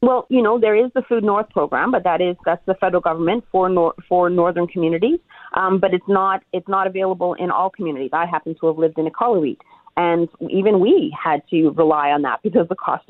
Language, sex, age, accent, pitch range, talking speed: English, female, 40-59, American, 165-205 Hz, 230 wpm